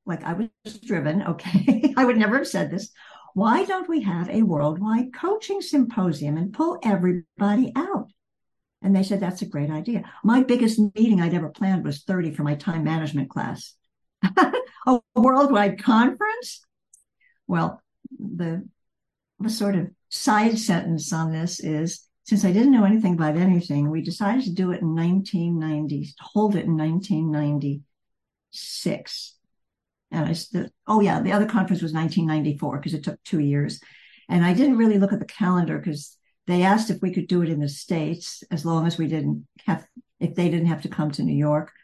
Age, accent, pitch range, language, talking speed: 60-79, American, 160-220 Hz, English, 180 wpm